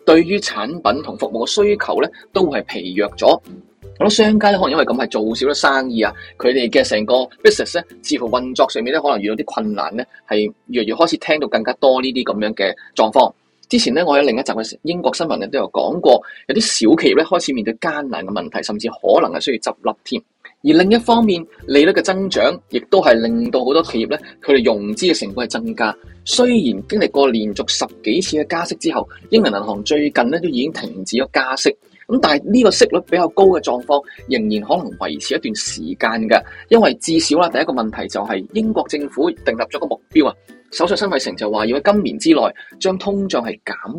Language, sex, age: Chinese, male, 20-39